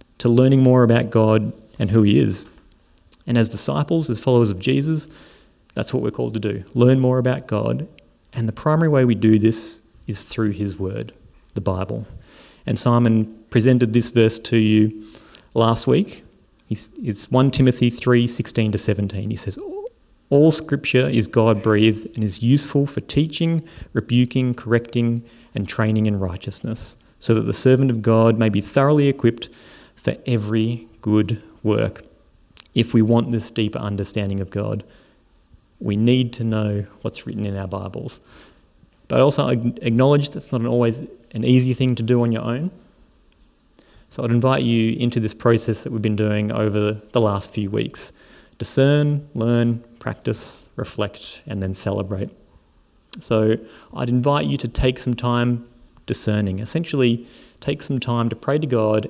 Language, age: English, 30-49